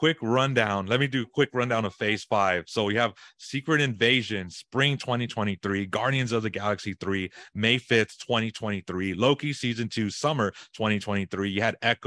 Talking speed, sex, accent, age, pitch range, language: 155 wpm, male, American, 30-49, 100-120 Hz, English